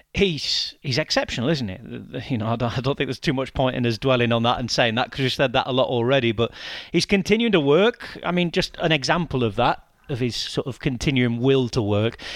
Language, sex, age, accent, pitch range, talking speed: English, male, 30-49, British, 120-170 Hz, 250 wpm